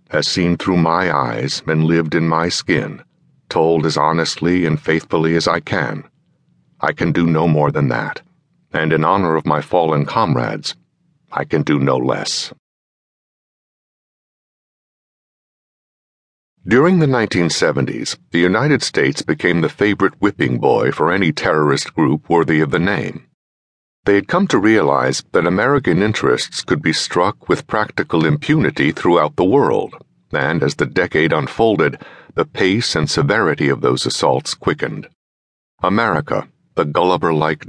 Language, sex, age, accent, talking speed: English, male, 60-79, American, 140 wpm